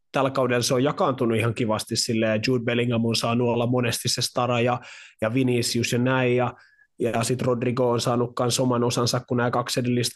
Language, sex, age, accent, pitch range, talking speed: Finnish, male, 20-39, native, 115-125 Hz, 200 wpm